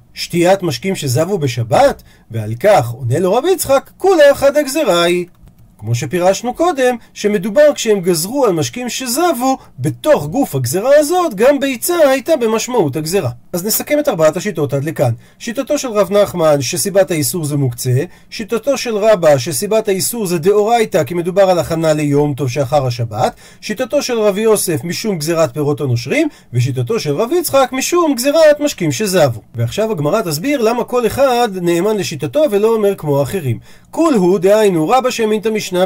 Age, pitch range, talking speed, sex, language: 40-59, 150-245 Hz, 145 wpm, male, Hebrew